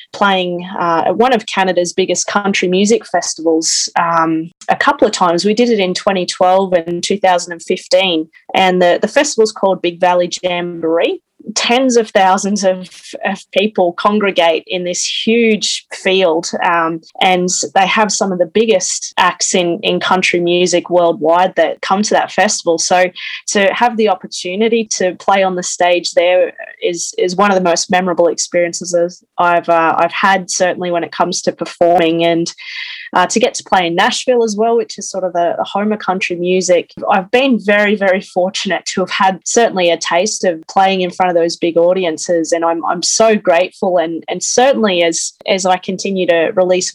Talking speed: 180 wpm